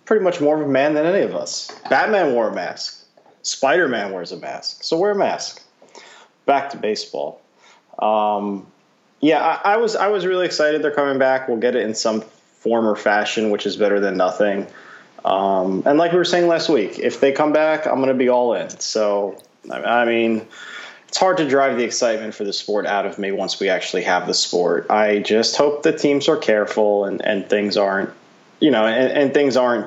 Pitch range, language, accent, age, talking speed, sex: 100-145 Hz, English, American, 20-39, 210 wpm, male